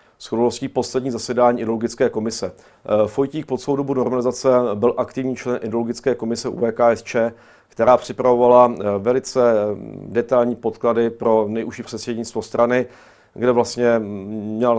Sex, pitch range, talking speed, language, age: male, 110-130 Hz, 120 wpm, Czech, 50-69